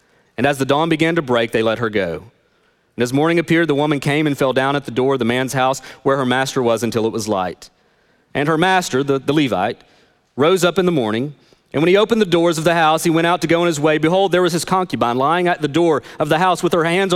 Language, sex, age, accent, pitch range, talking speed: English, male, 40-59, American, 130-170 Hz, 275 wpm